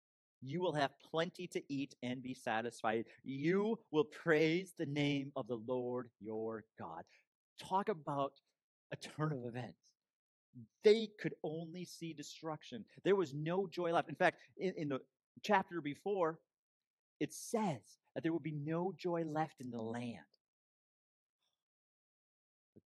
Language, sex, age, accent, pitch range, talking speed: English, male, 40-59, American, 100-155 Hz, 145 wpm